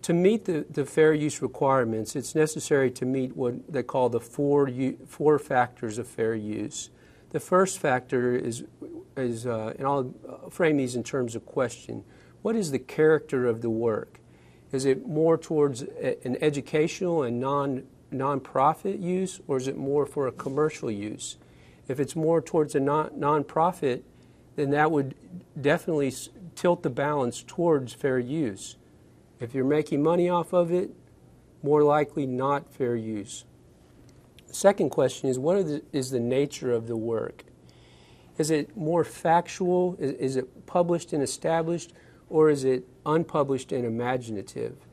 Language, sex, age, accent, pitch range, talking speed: English, male, 40-59, American, 125-155 Hz, 160 wpm